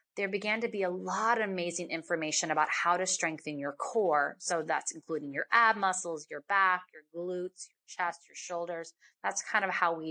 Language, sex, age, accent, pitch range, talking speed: English, female, 30-49, American, 170-215 Hz, 200 wpm